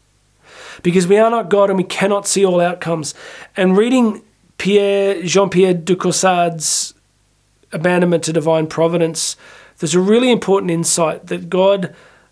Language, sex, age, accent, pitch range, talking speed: English, male, 40-59, Australian, 175-210 Hz, 135 wpm